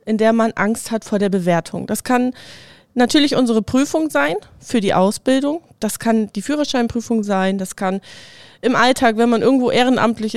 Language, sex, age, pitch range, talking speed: German, female, 20-39, 205-245 Hz, 175 wpm